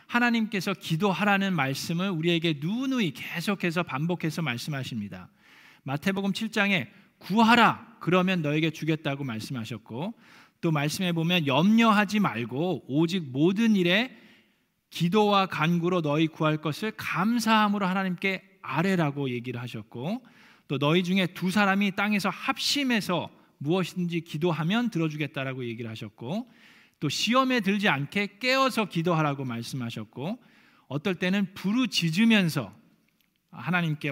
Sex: male